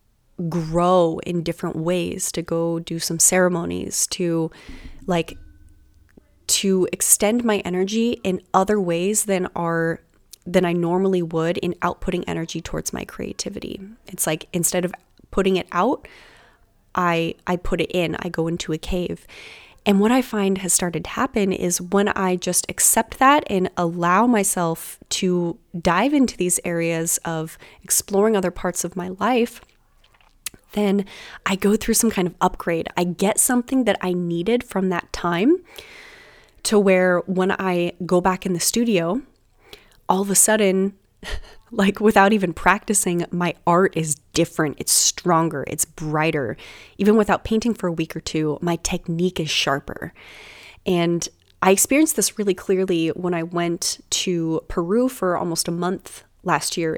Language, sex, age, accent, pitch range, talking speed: English, female, 20-39, American, 170-205 Hz, 155 wpm